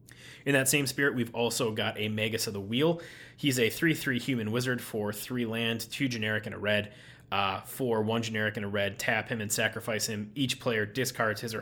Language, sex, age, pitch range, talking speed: English, male, 20-39, 105-125 Hz, 215 wpm